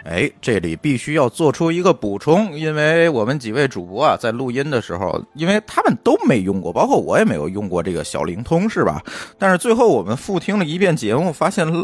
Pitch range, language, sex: 110-175 Hz, Chinese, male